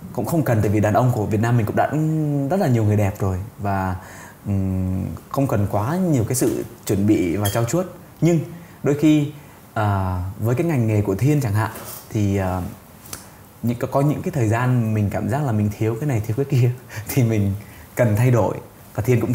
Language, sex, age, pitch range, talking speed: Vietnamese, male, 20-39, 100-130 Hz, 215 wpm